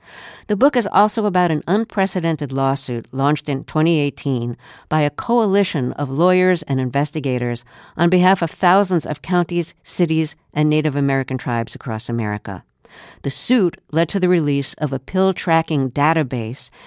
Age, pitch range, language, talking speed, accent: 60-79, 135-185 Hz, English, 145 wpm, American